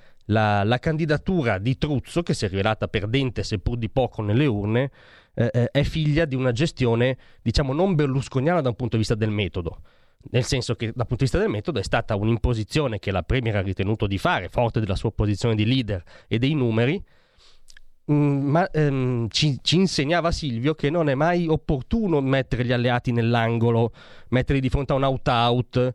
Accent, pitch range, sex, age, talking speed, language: native, 115-150 Hz, male, 30-49, 185 wpm, Italian